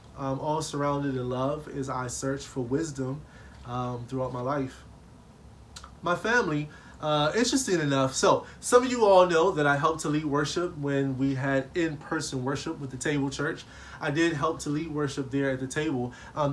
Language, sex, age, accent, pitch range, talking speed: English, male, 20-39, American, 130-150 Hz, 185 wpm